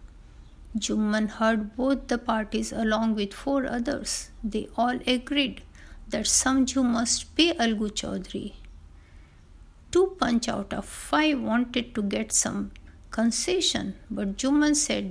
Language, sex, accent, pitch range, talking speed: Hindi, female, native, 200-250 Hz, 125 wpm